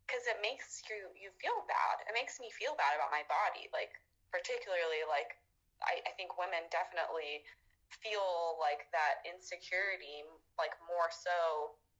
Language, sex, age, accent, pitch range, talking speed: English, female, 20-39, American, 170-275 Hz, 150 wpm